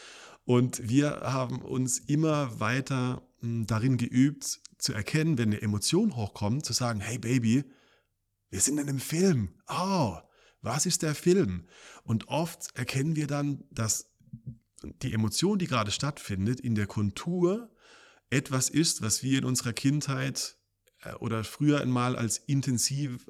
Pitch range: 115-145 Hz